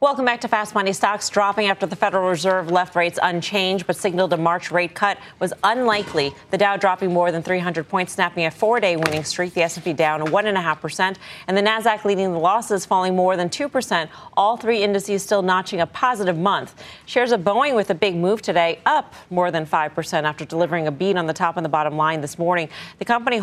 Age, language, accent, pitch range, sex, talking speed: 30-49, English, American, 165-205 Hz, female, 215 wpm